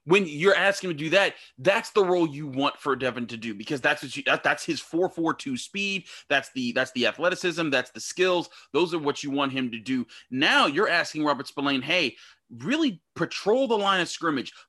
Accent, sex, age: American, male, 30-49